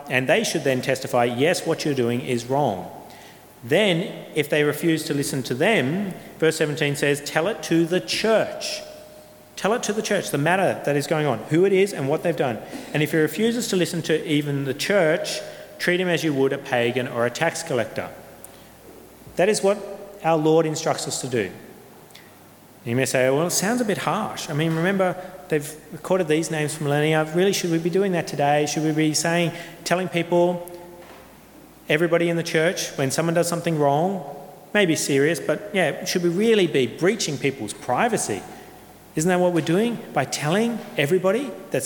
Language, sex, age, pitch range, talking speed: English, male, 40-59, 145-185 Hz, 195 wpm